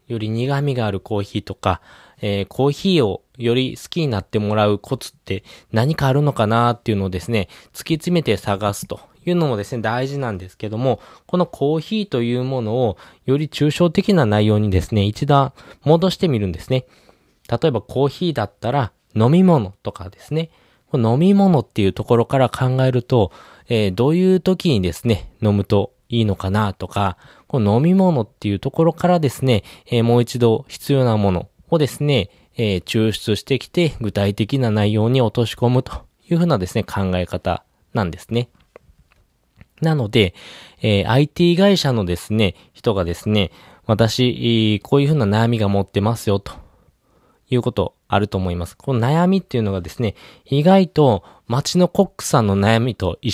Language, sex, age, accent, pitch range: Japanese, male, 20-39, native, 100-140 Hz